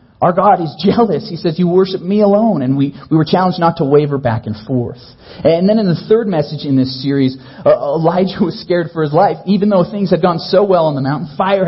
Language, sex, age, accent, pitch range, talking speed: English, male, 40-59, American, 130-185 Hz, 245 wpm